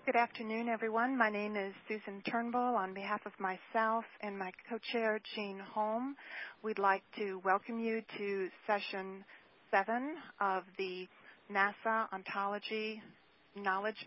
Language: English